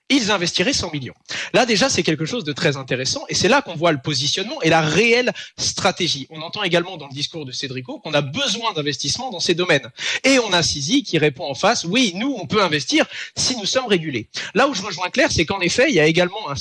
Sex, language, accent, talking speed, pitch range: male, French, French, 245 wpm, 155-215 Hz